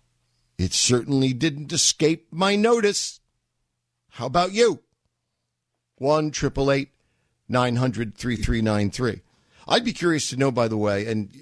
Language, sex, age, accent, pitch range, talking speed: English, male, 50-69, American, 95-125 Hz, 140 wpm